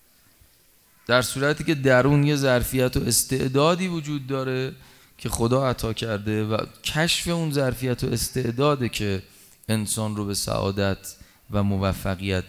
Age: 30-49